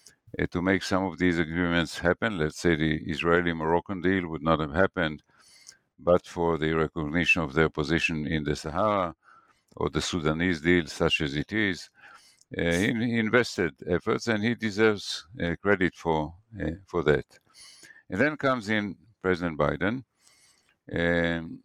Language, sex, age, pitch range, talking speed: English, male, 60-79, 80-95 Hz, 150 wpm